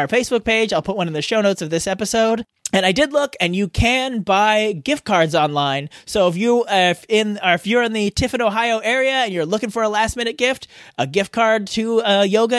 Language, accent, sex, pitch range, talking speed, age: English, American, male, 170-240 Hz, 240 wpm, 30-49